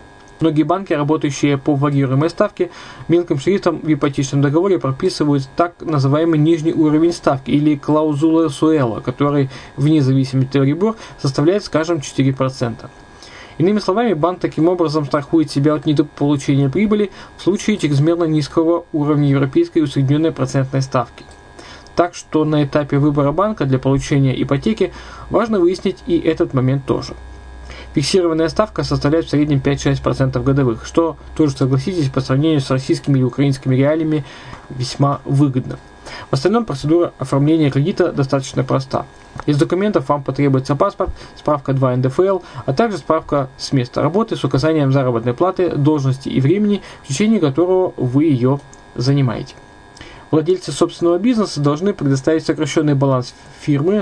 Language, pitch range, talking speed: Russian, 135-165 Hz, 135 wpm